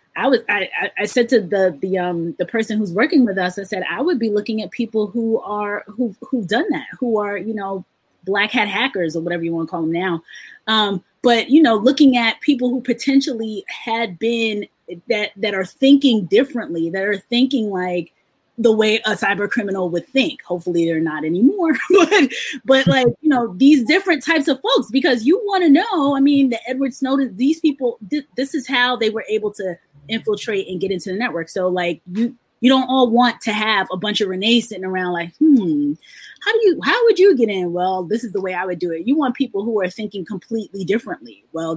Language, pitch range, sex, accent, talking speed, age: English, 185-260 Hz, female, American, 220 wpm, 20-39